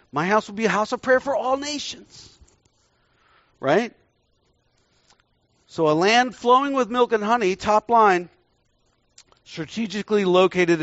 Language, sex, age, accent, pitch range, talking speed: English, male, 50-69, American, 145-215 Hz, 135 wpm